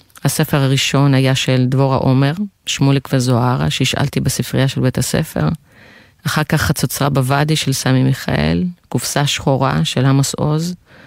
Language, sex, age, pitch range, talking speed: Hebrew, female, 30-49, 130-150 Hz, 135 wpm